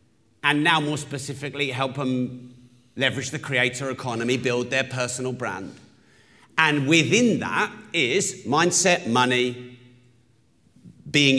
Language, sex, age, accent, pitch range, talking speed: English, male, 40-59, British, 125-160 Hz, 110 wpm